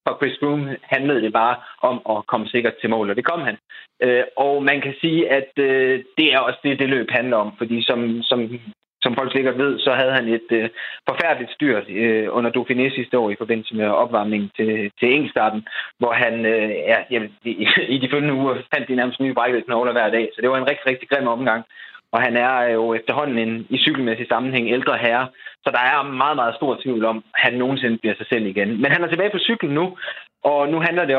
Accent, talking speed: native, 225 wpm